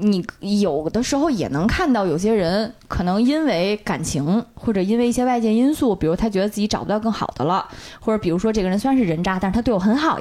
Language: Chinese